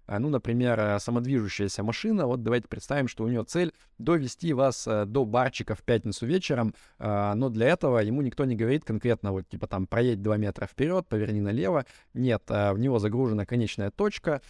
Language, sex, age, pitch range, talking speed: Russian, male, 20-39, 105-130 Hz, 170 wpm